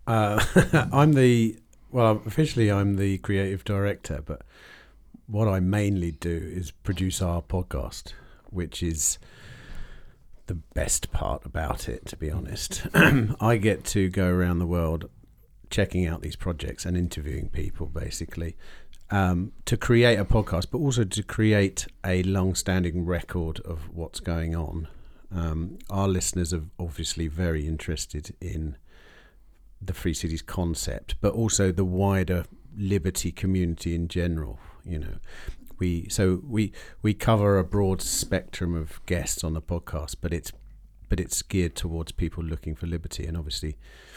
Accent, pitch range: British, 80-100 Hz